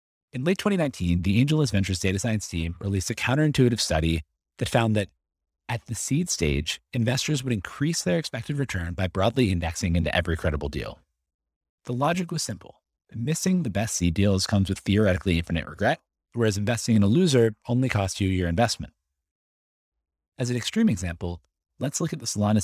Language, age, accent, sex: English, 30-49, American, male